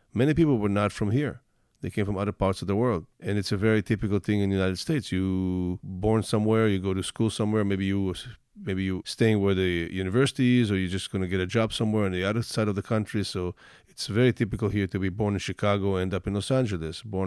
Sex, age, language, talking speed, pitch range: male, 50-69, English, 255 wpm, 95-115 Hz